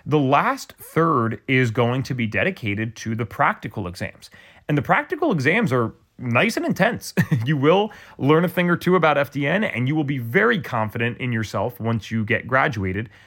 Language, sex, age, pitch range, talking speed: English, male, 30-49, 110-155 Hz, 185 wpm